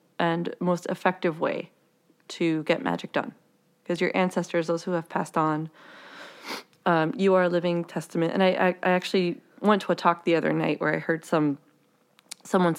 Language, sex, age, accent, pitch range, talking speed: English, female, 20-39, American, 165-185 Hz, 185 wpm